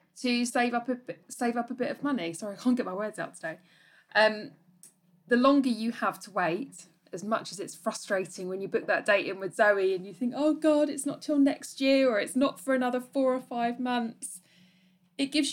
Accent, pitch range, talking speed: British, 185-255 Hz, 220 wpm